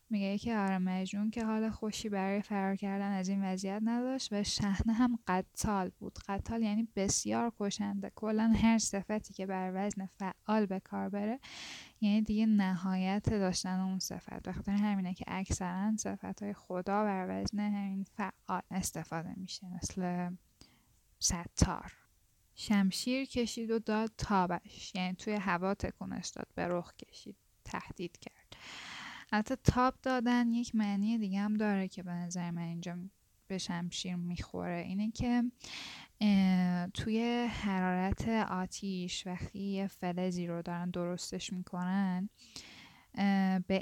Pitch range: 185-215 Hz